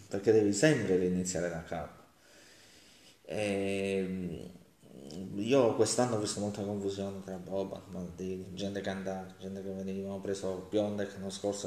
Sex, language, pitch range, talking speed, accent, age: male, Italian, 95-105 Hz, 140 wpm, native, 20-39